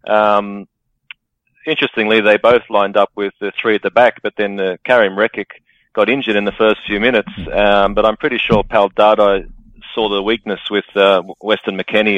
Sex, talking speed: male, 185 wpm